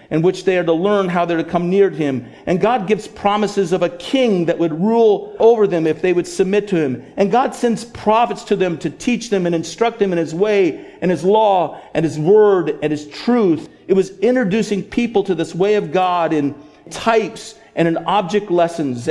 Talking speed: 225 wpm